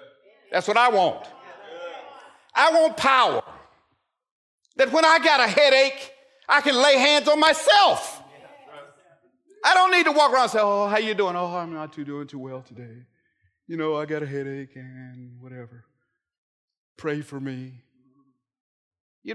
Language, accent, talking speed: English, American, 155 wpm